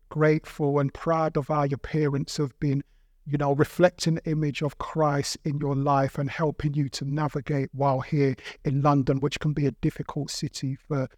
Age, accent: 50-69, British